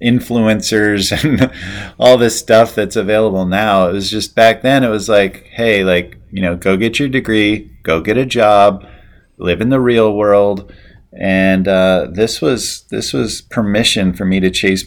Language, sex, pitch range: English, male, 95-115 Hz